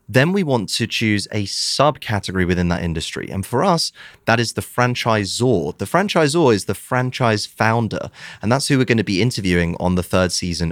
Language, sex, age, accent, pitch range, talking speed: English, male, 30-49, British, 95-125 Hz, 195 wpm